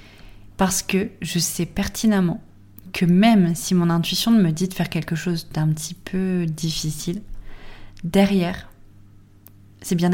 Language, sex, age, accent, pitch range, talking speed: French, female, 20-39, French, 150-195 Hz, 135 wpm